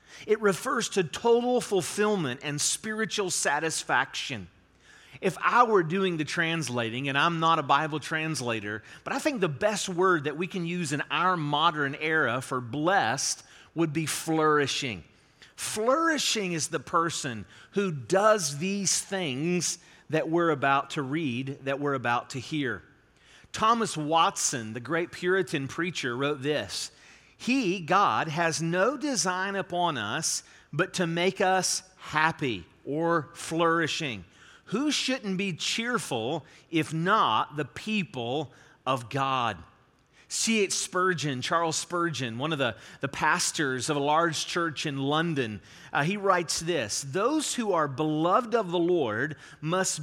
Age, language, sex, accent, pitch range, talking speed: 40-59, English, male, American, 145-190 Hz, 140 wpm